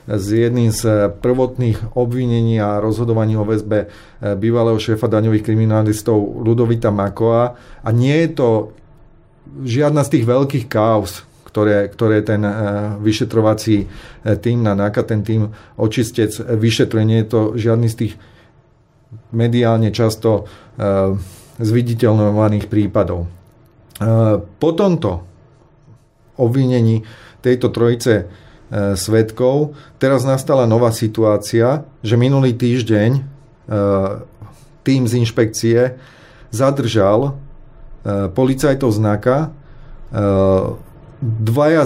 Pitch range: 105-125 Hz